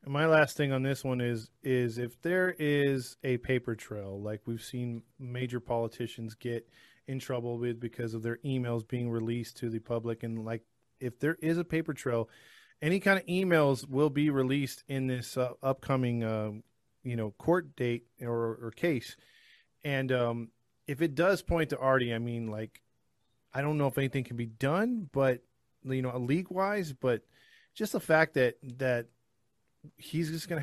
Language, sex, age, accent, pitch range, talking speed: English, male, 20-39, American, 120-150 Hz, 180 wpm